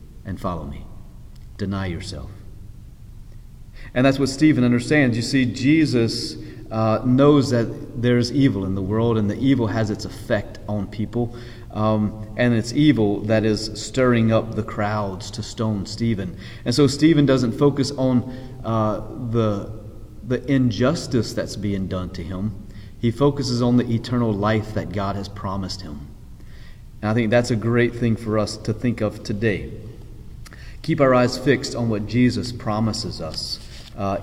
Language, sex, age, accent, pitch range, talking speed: English, male, 30-49, American, 105-120 Hz, 160 wpm